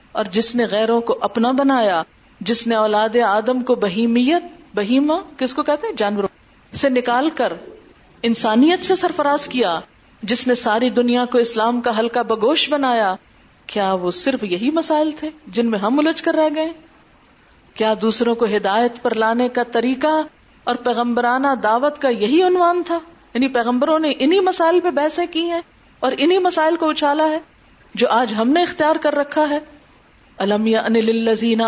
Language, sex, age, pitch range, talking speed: Urdu, female, 40-59, 230-300 Hz, 165 wpm